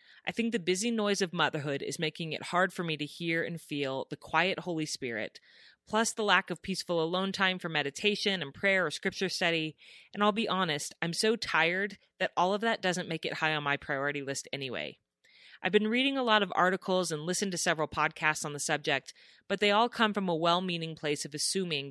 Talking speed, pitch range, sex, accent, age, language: 220 wpm, 150-190 Hz, female, American, 30-49, English